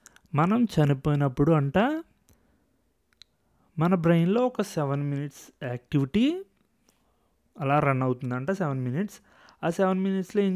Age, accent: 20-39, native